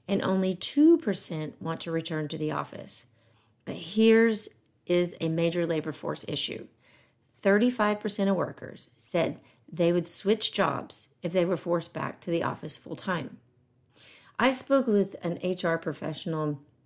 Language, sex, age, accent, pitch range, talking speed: English, female, 40-59, American, 155-205 Hz, 145 wpm